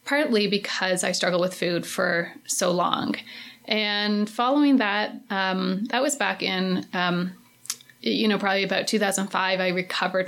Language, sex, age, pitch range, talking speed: English, female, 30-49, 190-230 Hz, 145 wpm